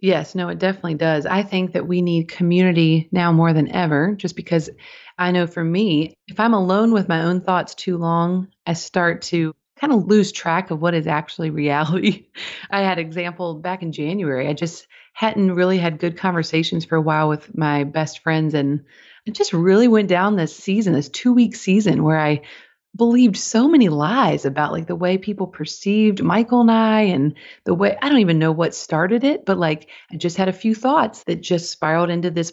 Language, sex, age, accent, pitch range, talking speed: English, female, 30-49, American, 165-200 Hz, 205 wpm